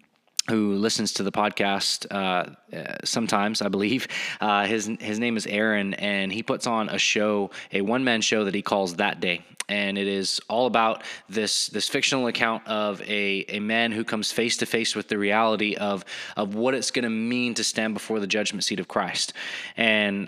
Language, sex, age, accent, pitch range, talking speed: English, male, 20-39, American, 105-125 Hz, 200 wpm